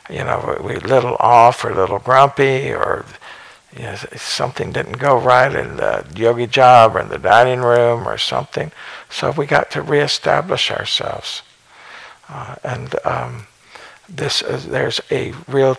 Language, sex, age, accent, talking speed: English, male, 60-79, American, 160 wpm